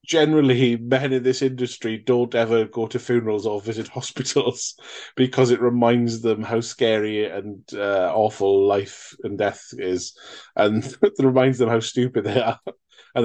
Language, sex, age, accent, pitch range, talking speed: English, male, 20-39, British, 105-130 Hz, 160 wpm